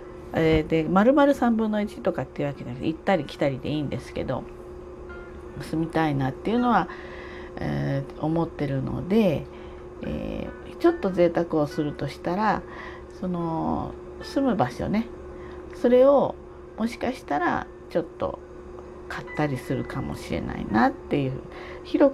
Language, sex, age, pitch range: Japanese, female, 40-59, 145-200 Hz